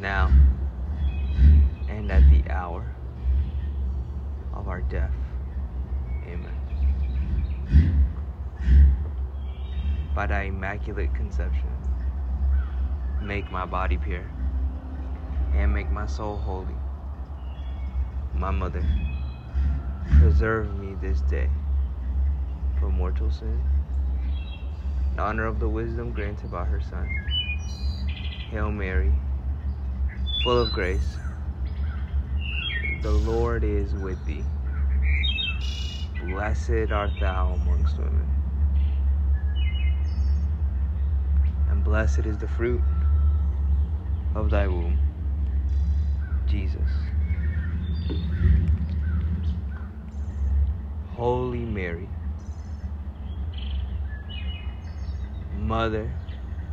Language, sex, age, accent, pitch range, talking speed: English, male, 20-39, American, 70-75 Hz, 70 wpm